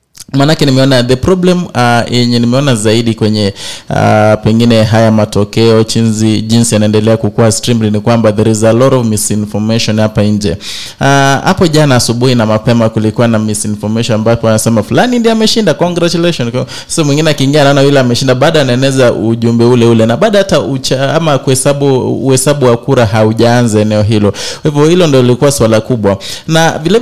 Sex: male